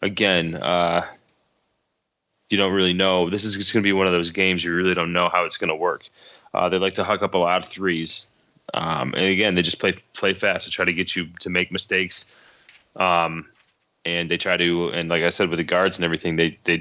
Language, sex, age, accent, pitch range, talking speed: English, male, 20-39, American, 85-95 Hz, 235 wpm